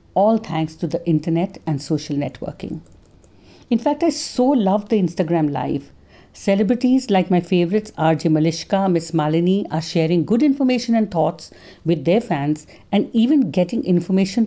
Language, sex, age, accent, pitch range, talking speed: English, female, 50-69, Indian, 160-220 Hz, 155 wpm